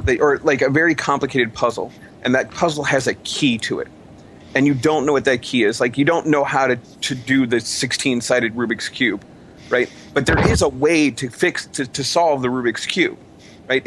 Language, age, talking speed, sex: English, 30-49, 220 wpm, male